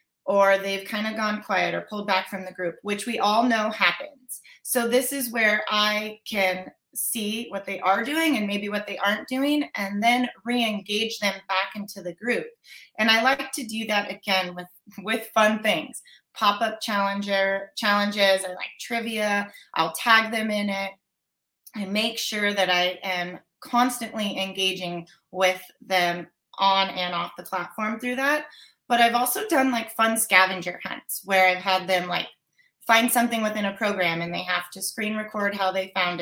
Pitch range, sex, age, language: 190-230 Hz, female, 30-49, English